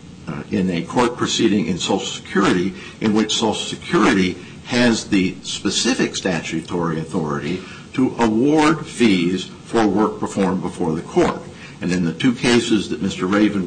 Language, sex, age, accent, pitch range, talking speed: English, male, 60-79, American, 90-115 Hz, 145 wpm